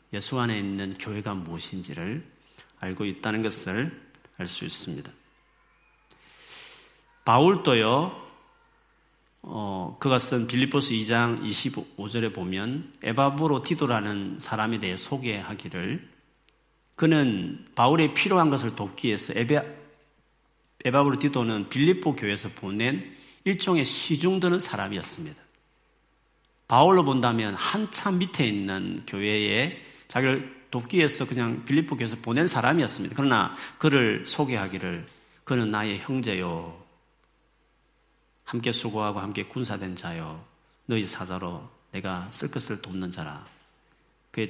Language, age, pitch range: Korean, 40-59, 100-140 Hz